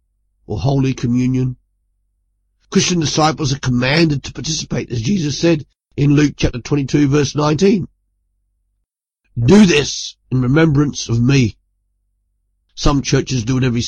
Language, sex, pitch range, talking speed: English, male, 105-145 Hz, 125 wpm